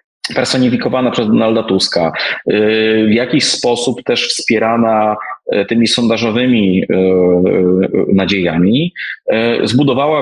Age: 30-49